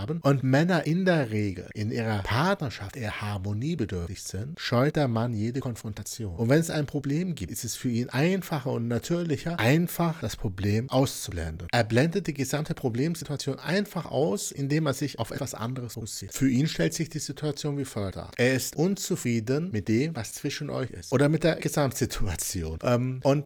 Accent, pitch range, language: German, 110-150 Hz, German